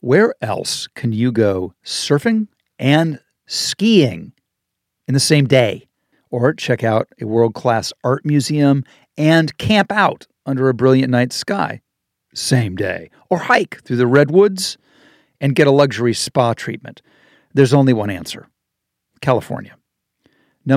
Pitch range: 115-150 Hz